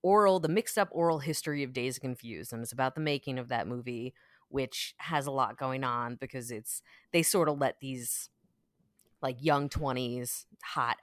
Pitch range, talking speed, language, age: 130-165 Hz, 185 wpm, English, 20-39